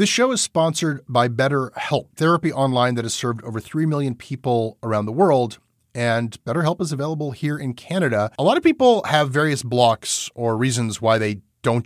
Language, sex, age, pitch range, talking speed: English, male, 30-49, 110-145 Hz, 185 wpm